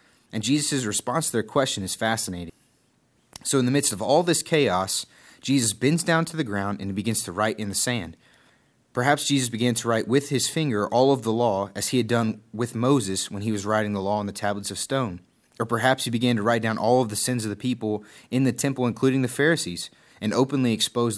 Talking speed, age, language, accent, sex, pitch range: 230 wpm, 30-49, English, American, male, 105-130 Hz